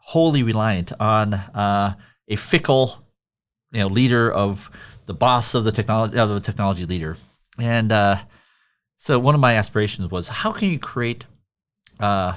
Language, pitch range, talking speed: English, 100-140 Hz, 155 wpm